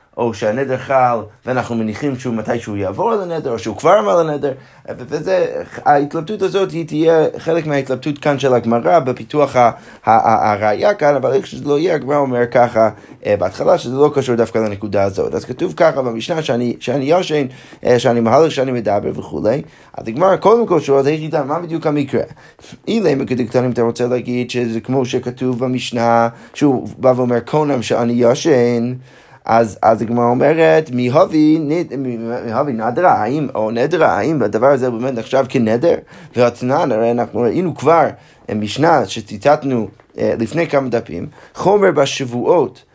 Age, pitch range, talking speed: 20-39, 120-150 Hz, 145 wpm